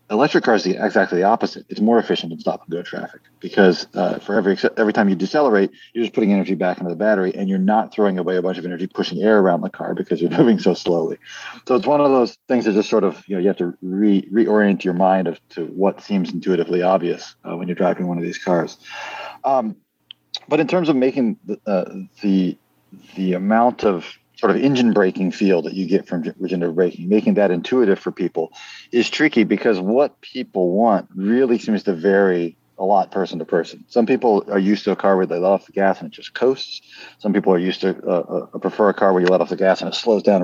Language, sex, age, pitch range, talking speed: English, male, 40-59, 95-115 Hz, 240 wpm